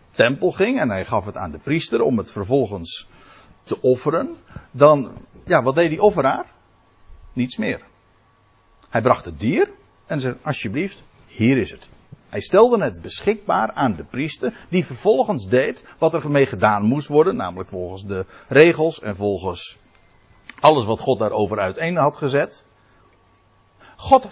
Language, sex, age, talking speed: Dutch, male, 60-79, 155 wpm